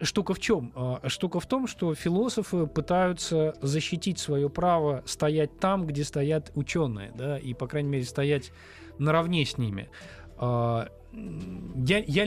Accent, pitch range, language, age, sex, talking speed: native, 120-160 Hz, Russian, 20-39, male, 135 wpm